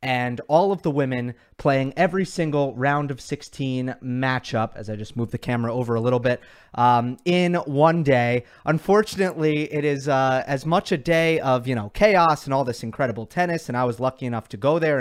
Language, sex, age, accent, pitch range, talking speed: English, male, 30-49, American, 125-155 Hz, 205 wpm